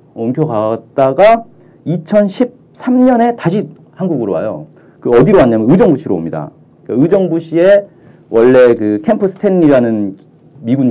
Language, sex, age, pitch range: Korean, male, 40-59, 125-195 Hz